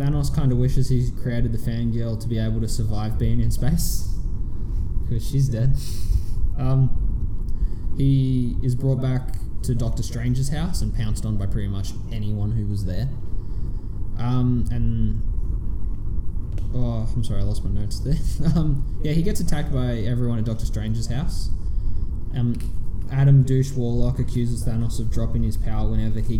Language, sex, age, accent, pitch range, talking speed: English, male, 10-29, Australian, 105-125 Hz, 160 wpm